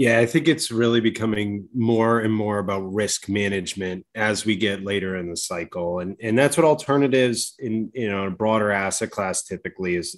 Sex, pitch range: male, 100-115 Hz